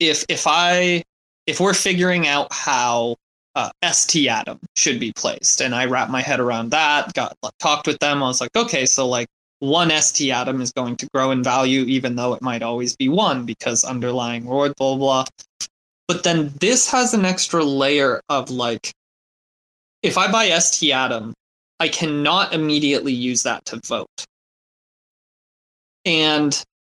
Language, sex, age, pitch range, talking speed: English, male, 20-39, 125-165 Hz, 165 wpm